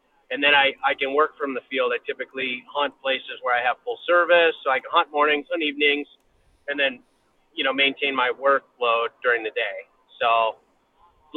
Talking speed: 195 wpm